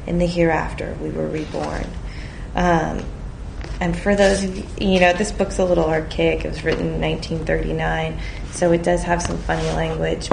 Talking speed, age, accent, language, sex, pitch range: 180 wpm, 20-39, American, English, female, 150-180 Hz